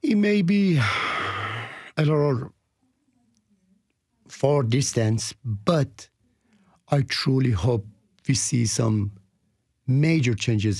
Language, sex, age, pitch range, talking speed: English, male, 50-69, 110-145 Hz, 90 wpm